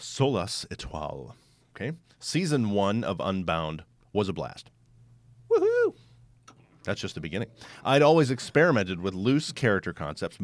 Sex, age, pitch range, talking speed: male, 40-59, 90-130 Hz, 125 wpm